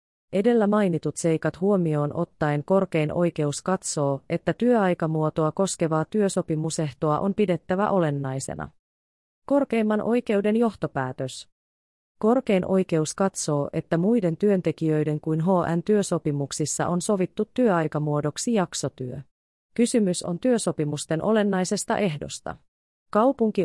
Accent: native